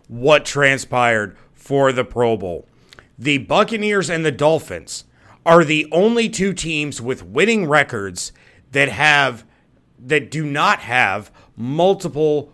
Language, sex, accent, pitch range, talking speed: English, male, American, 130-170 Hz, 125 wpm